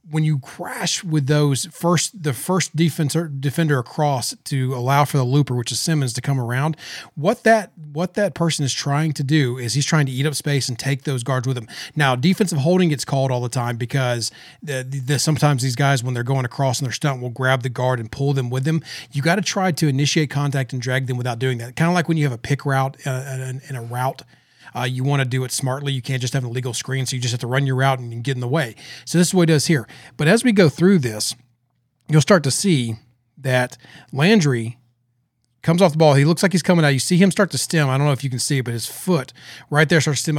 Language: English